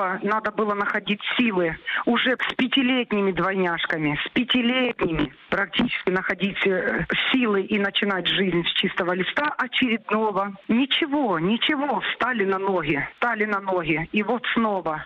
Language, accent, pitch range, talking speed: Ukrainian, native, 190-240 Hz, 125 wpm